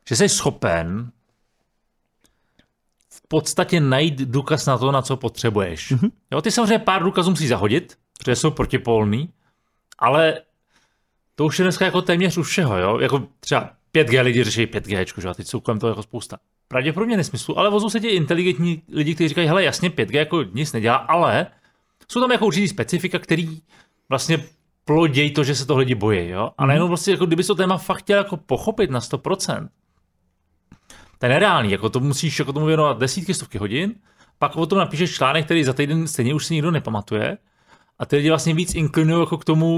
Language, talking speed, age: Czech, 190 wpm, 30-49